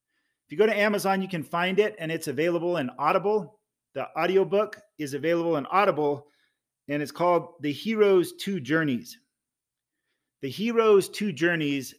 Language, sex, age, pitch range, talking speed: English, male, 40-59, 155-195 Hz, 155 wpm